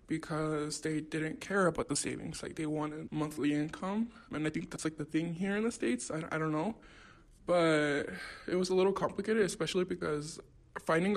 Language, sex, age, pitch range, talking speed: English, male, 20-39, 150-180 Hz, 195 wpm